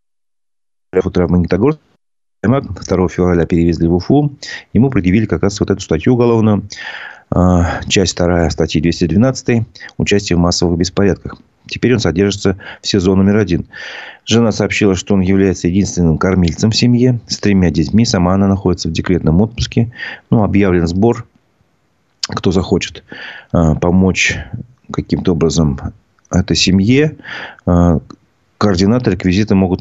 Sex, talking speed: male, 120 wpm